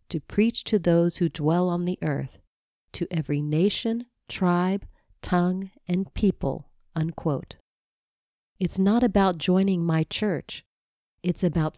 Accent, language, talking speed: American, English, 125 wpm